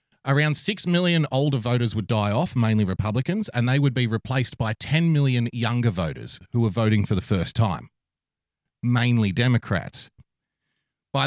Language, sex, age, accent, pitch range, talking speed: English, male, 30-49, Australian, 105-135 Hz, 160 wpm